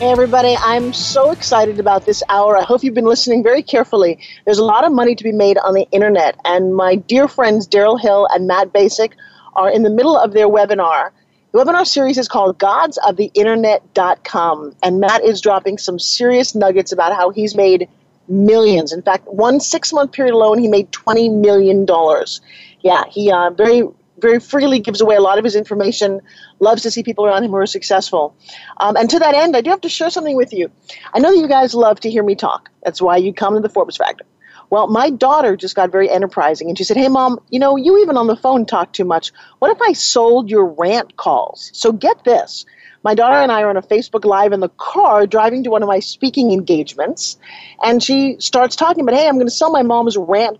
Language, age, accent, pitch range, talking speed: English, 40-59, American, 195-255 Hz, 220 wpm